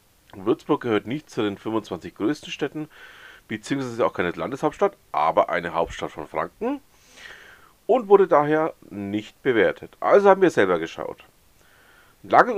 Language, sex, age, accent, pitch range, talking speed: German, male, 40-59, German, 125-185 Hz, 135 wpm